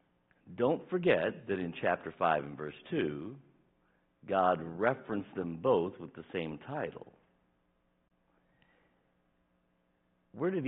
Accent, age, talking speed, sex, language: American, 60-79, 105 wpm, male, English